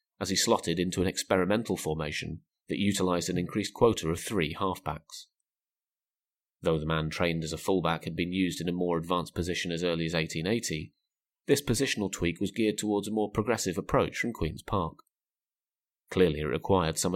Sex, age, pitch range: male, 30-49, 80-105 Hz